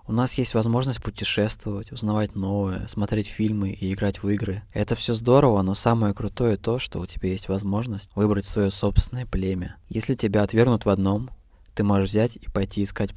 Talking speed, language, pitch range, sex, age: 180 wpm, Russian, 95-110 Hz, male, 20-39